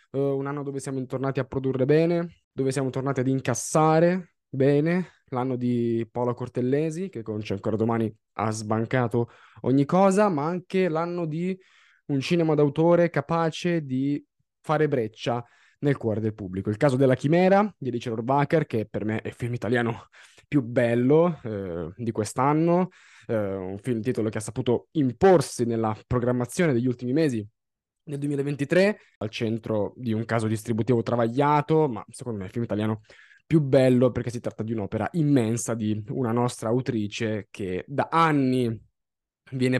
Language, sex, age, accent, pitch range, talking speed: Italian, male, 20-39, native, 115-145 Hz, 155 wpm